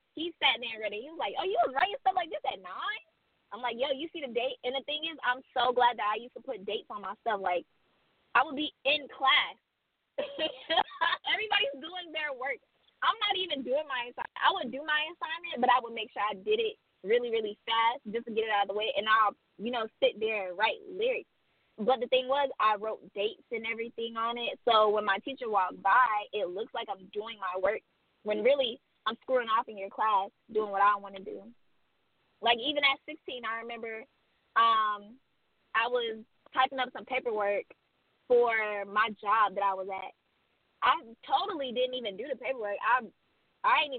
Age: 20-39